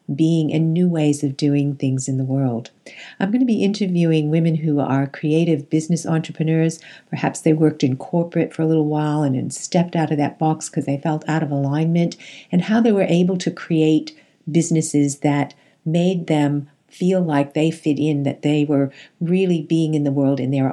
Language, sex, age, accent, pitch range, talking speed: English, female, 50-69, American, 140-170 Hz, 200 wpm